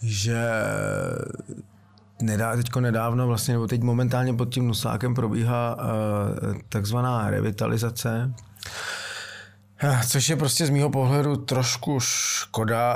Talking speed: 105 wpm